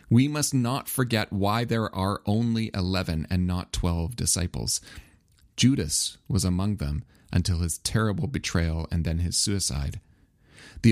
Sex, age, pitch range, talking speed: male, 30-49, 85-110 Hz, 145 wpm